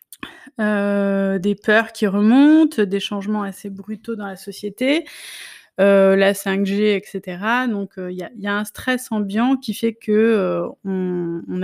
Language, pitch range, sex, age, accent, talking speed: French, 195-225 Hz, female, 20-39, French, 160 wpm